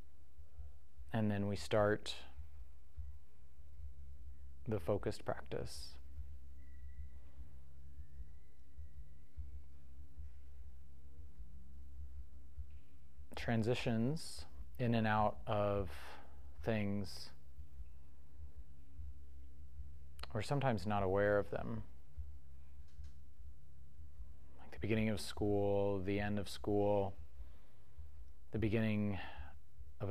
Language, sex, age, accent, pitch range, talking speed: English, male, 30-49, American, 70-100 Hz, 60 wpm